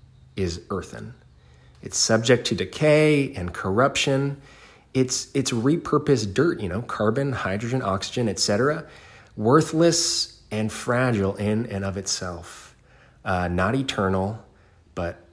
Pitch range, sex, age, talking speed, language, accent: 95-125 Hz, male, 30-49, 115 wpm, English, American